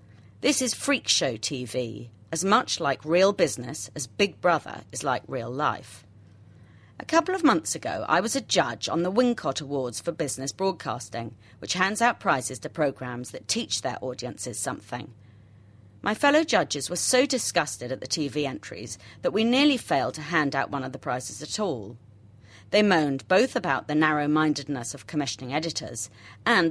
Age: 40-59